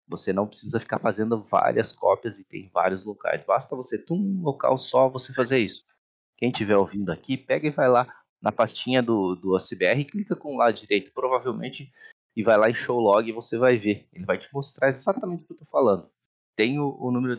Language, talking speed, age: Portuguese, 215 wpm, 20-39